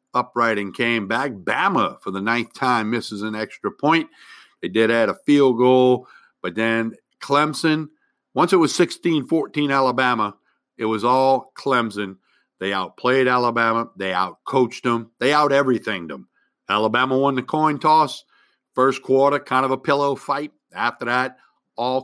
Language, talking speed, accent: English, 155 wpm, American